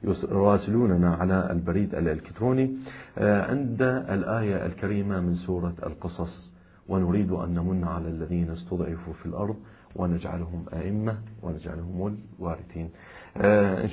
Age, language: 40-59, Arabic